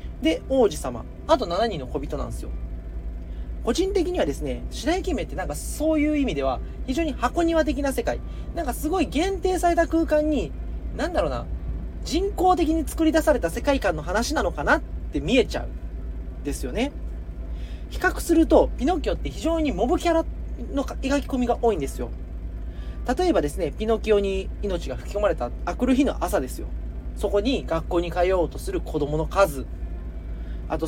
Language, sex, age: Japanese, male, 40-59